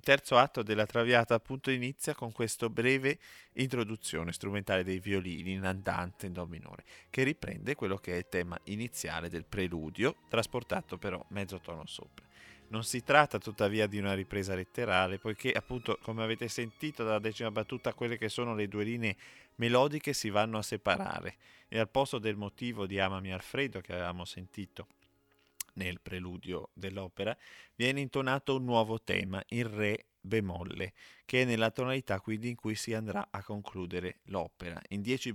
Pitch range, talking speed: 95-120 Hz, 165 wpm